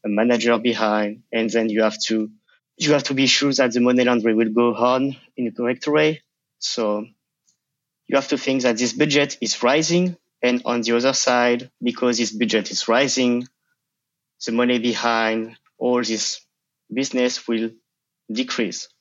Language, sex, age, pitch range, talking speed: English, male, 20-39, 110-135 Hz, 165 wpm